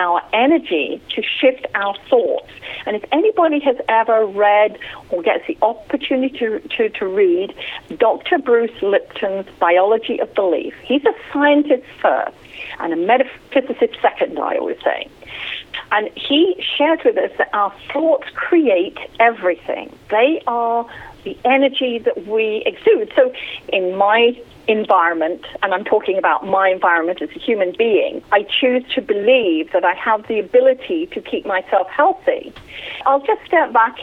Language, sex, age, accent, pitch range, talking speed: English, female, 50-69, British, 210-335 Hz, 150 wpm